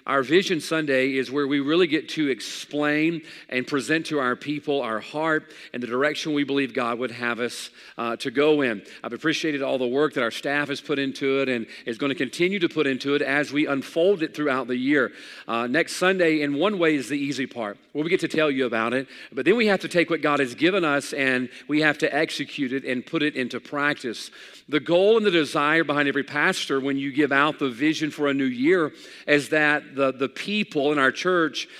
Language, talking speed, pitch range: English, 230 wpm, 135-165 Hz